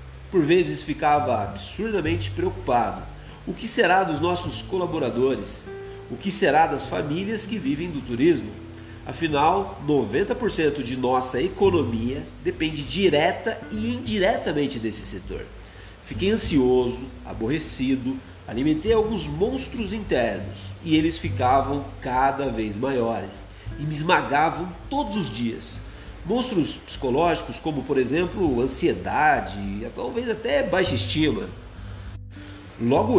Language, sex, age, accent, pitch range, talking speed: Portuguese, male, 40-59, Brazilian, 105-170 Hz, 110 wpm